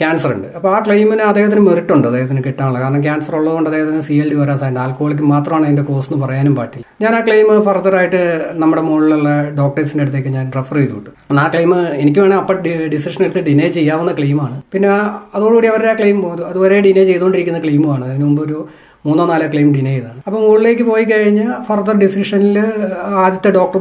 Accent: native